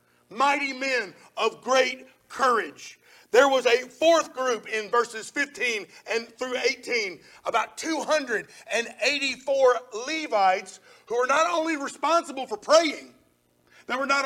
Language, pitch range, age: English, 220-295 Hz, 50-69